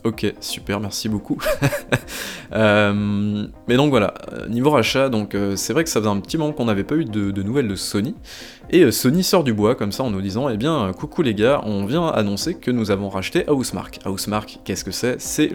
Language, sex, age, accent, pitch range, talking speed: French, male, 20-39, French, 100-120 Hz, 230 wpm